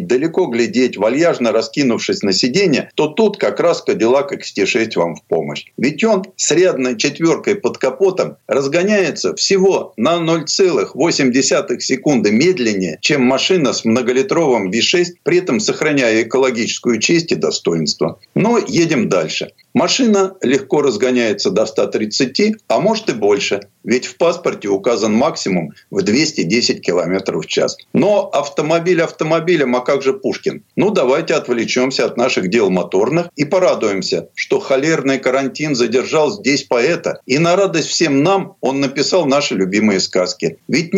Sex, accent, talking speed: male, native, 140 wpm